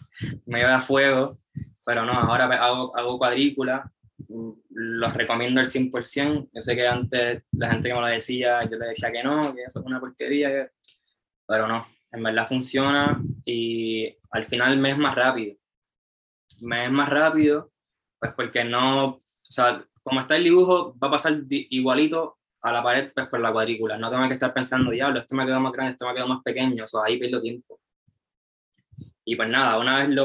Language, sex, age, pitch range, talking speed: Spanish, male, 10-29, 115-135 Hz, 195 wpm